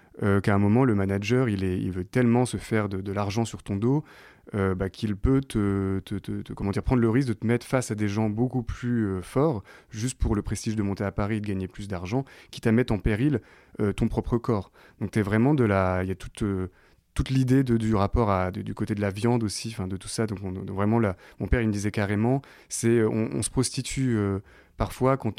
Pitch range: 100-120 Hz